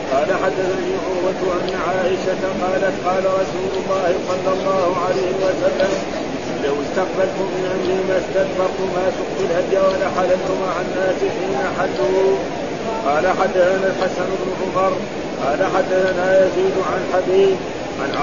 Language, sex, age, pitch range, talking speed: Arabic, male, 50-69, 185-190 Hz, 125 wpm